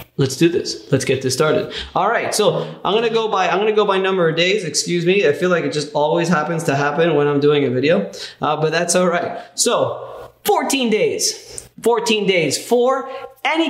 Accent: American